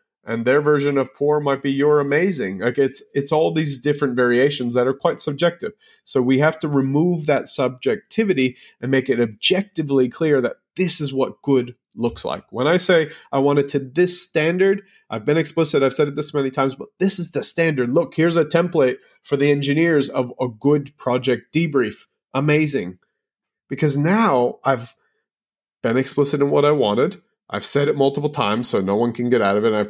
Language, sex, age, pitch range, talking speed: English, male, 30-49, 120-155 Hz, 195 wpm